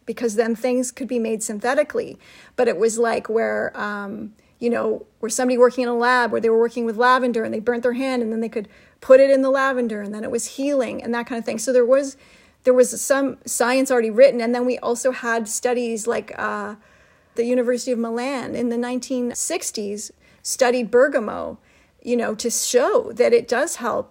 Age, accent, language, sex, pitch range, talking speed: 40-59, American, English, female, 225-260 Hz, 210 wpm